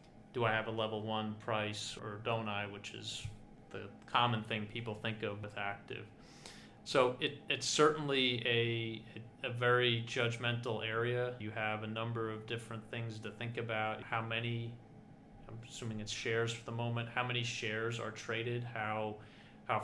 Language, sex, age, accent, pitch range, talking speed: English, male, 30-49, American, 110-125 Hz, 165 wpm